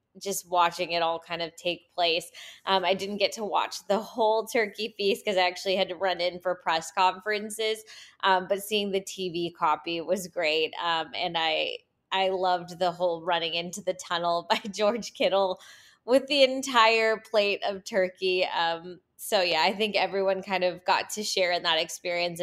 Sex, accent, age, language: female, American, 20-39, English